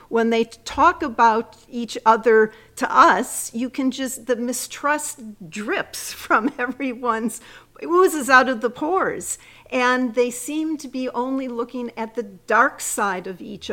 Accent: American